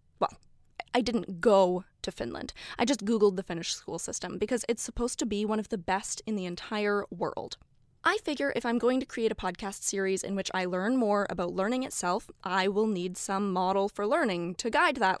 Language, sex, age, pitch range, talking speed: English, female, 20-39, 190-235 Hz, 215 wpm